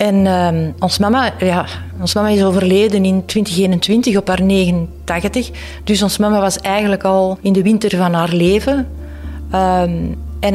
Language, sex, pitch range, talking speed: Dutch, female, 180-215 Hz, 160 wpm